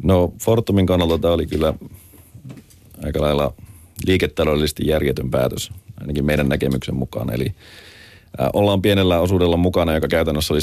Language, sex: Finnish, male